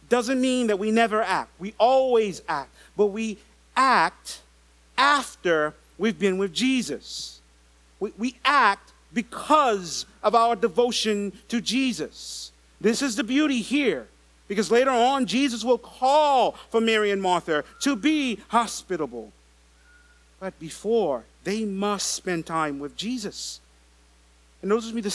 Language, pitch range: English, 175-260 Hz